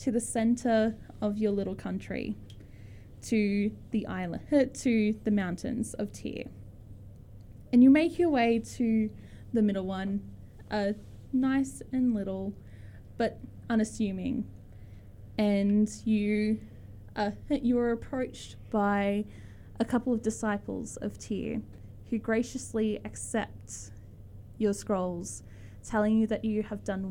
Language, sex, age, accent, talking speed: English, female, 10-29, Australian, 115 wpm